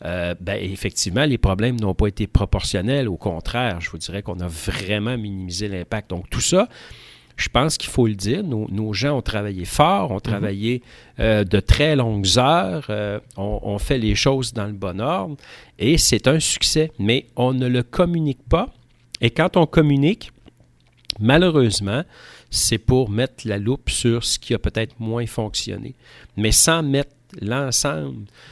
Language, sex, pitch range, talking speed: French, male, 100-125 Hz, 175 wpm